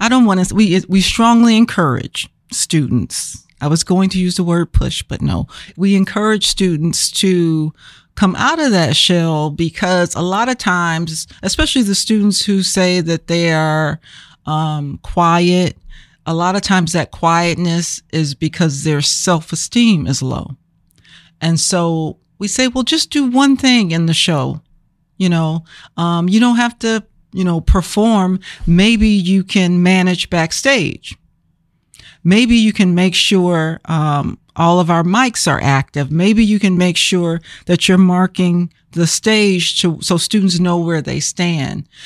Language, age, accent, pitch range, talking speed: English, 40-59, American, 160-190 Hz, 160 wpm